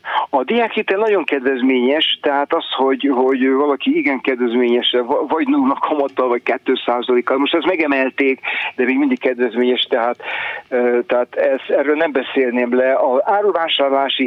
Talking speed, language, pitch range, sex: 135 wpm, Hungarian, 120-140 Hz, male